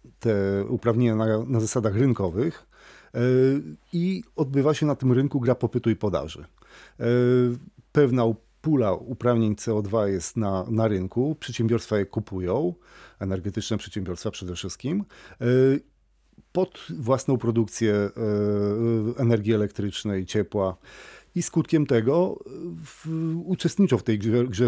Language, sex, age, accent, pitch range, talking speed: Polish, male, 40-59, native, 105-140 Hz, 110 wpm